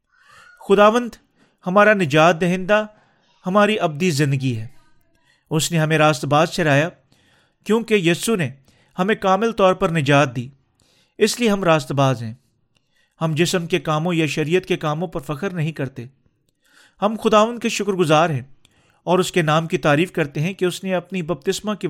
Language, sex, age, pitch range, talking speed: Urdu, male, 40-59, 140-195 Hz, 160 wpm